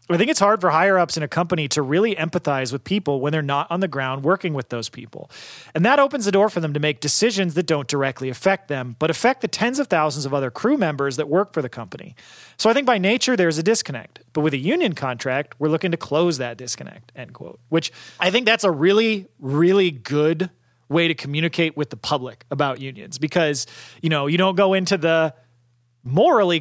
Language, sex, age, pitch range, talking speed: English, male, 30-49, 145-185 Hz, 225 wpm